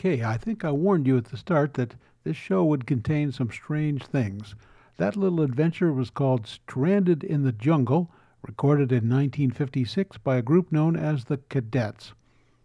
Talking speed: 170 wpm